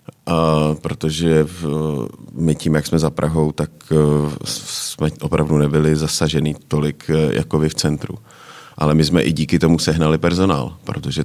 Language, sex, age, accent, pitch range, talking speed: Czech, male, 30-49, native, 75-85 Hz, 145 wpm